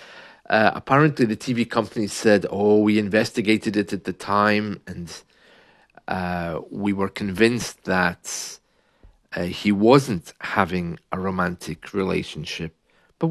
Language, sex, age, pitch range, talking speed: English, male, 40-59, 95-130 Hz, 120 wpm